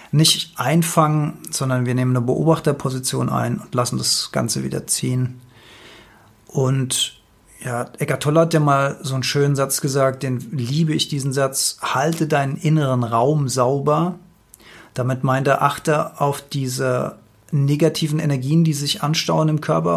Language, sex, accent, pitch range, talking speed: German, male, German, 135-160 Hz, 145 wpm